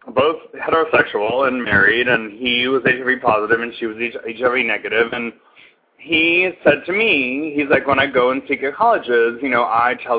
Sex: male